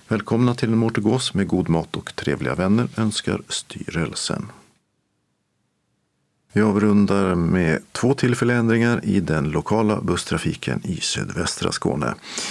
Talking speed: 120 wpm